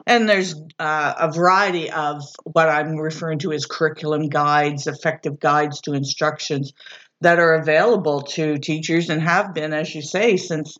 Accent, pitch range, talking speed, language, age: American, 150-170 Hz, 160 wpm, English, 50-69